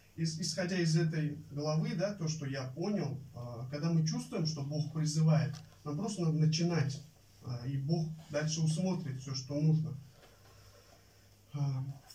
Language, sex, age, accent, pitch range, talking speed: Russian, male, 30-49, native, 135-175 Hz, 130 wpm